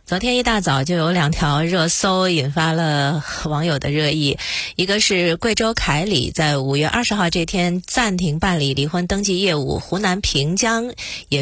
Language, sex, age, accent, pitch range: Chinese, female, 30-49, native, 155-225 Hz